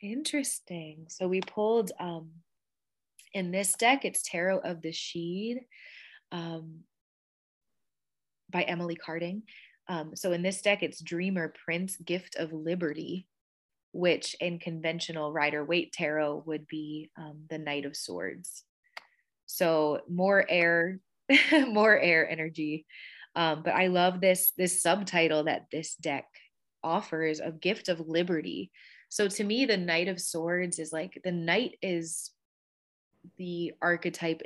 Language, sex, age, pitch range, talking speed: English, female, 20-39, 155-185 Hz, 130 wpm